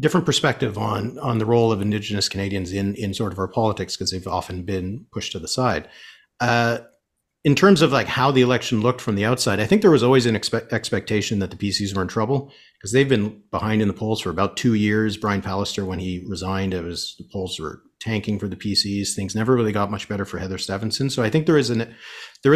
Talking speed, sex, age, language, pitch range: 240 wpm, male, 40-59, English, 100-120 Hz